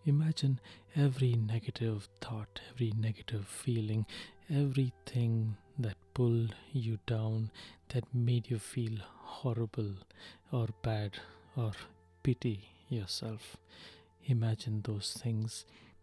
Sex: male